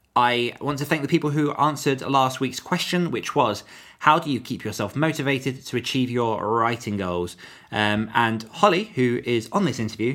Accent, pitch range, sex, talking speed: British, 105-135 Hz, male, 190 wpm